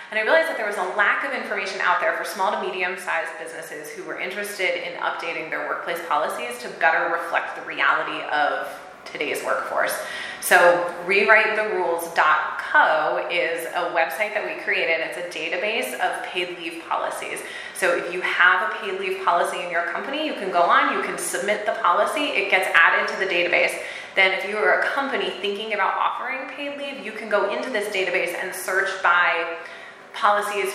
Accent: American